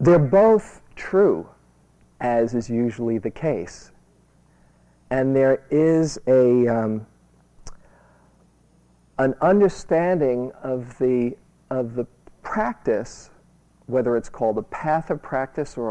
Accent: American